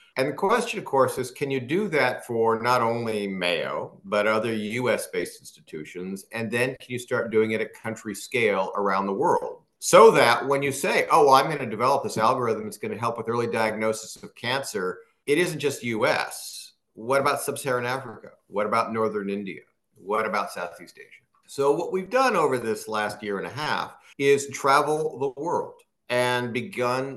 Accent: American